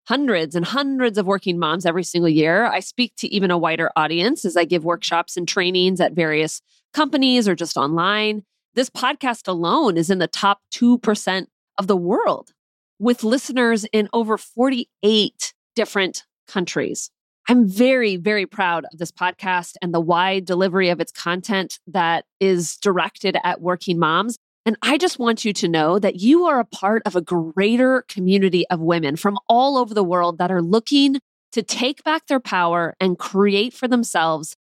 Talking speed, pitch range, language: 175 wpm, 180-245 Hz, English